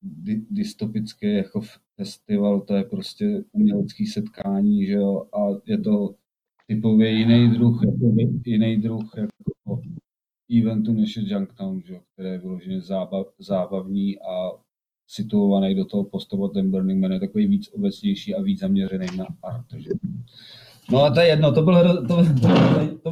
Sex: male